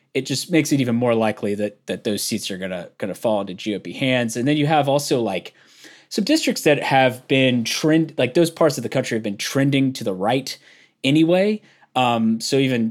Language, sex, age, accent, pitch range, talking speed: English, male, 20-39, American, 110-140 Hz, 220 wpm